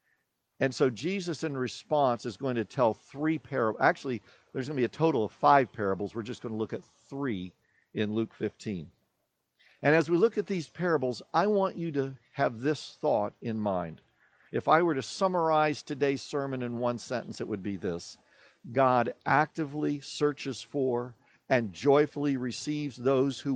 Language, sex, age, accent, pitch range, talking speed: English, male, 50-69, American, 120-190 Hz, 180 wpm